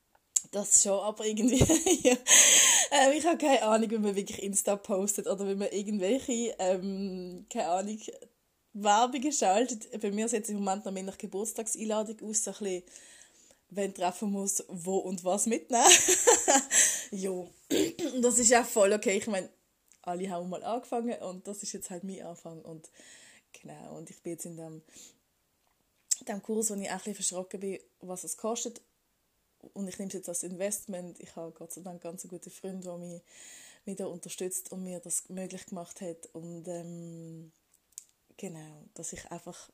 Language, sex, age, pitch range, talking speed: German, female, 20-39, 180-235 Hz, 175 wpm